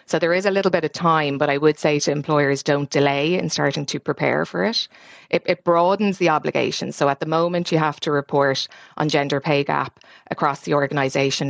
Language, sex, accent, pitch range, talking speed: English, female, Irish, 145-165 Hz, 220 wpm